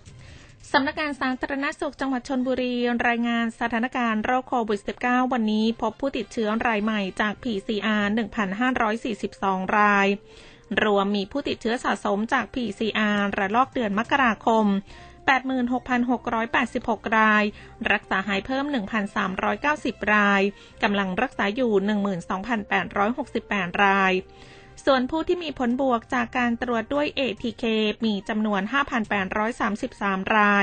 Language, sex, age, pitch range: Thai, female, 20-39, 200-245 Hz